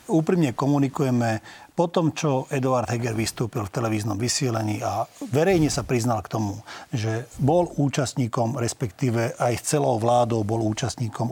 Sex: male